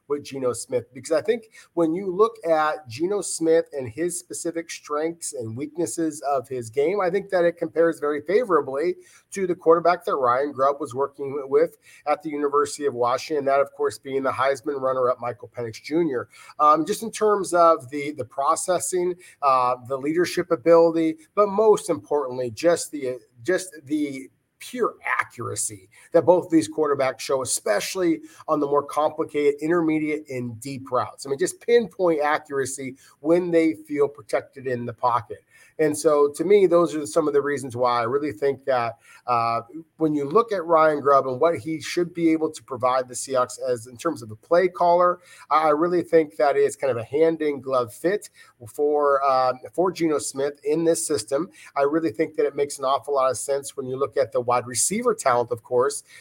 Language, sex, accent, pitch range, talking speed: English, male, American, 135-170 Hz, 190 wpm